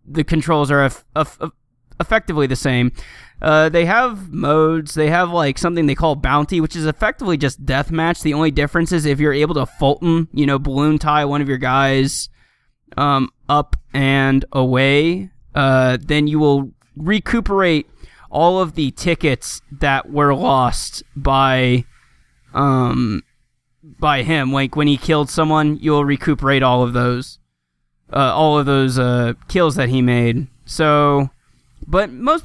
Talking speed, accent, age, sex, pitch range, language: 155 wpm, American, 20-39, male, 130-160 Hz, English